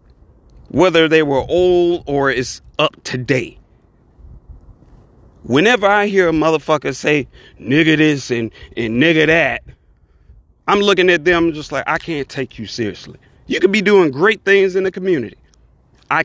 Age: 40-59